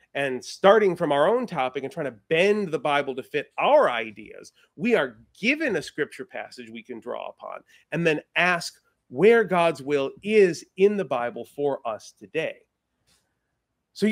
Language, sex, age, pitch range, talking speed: English, male, 30-49, 145-215 Hz, 170 wpm